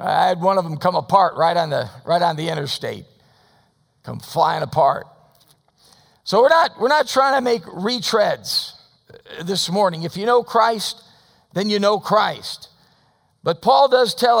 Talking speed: 165 wpm